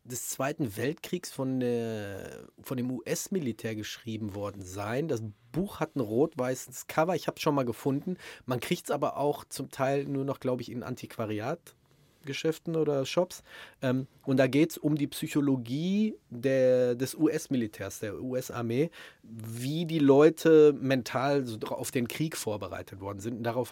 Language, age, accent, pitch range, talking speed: German, 30-49, German, 115-140 Hz, 160 wpm